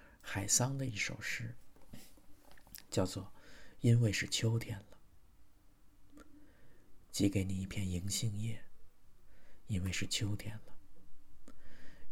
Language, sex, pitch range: Chinese, male, 95-115 Hz